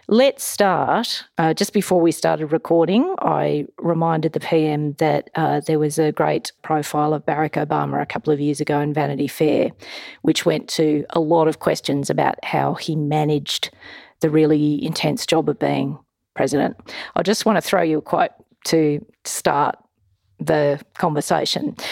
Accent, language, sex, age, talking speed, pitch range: Australian, English, female, 40-59, 165 wpm, 155-190 Hz